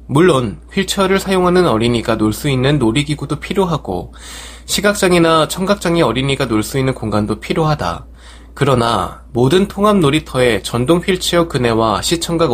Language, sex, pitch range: Korean, male, 105-165 Hz